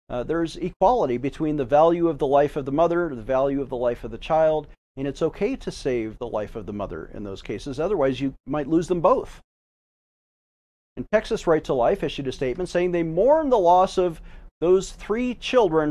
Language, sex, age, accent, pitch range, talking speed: English, male, 40-59, American, 140-195 Hz, 210 wpm